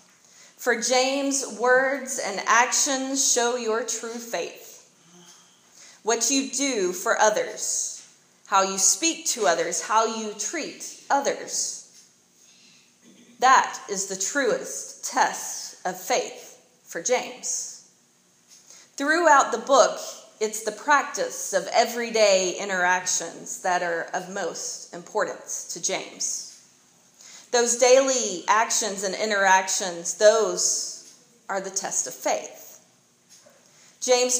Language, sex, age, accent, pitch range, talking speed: English, female, 30-49, American, 190-255 Hz, 105 wpm